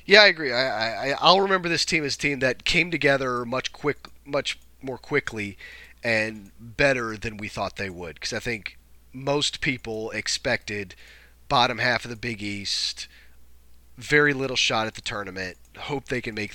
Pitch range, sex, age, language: 90-135 Hz, male, 40-59, English